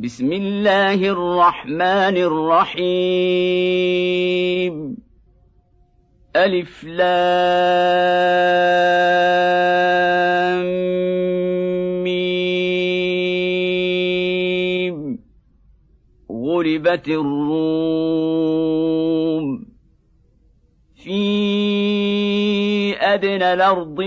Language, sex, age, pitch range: Arabic, male, 50-69, 160-180 Hz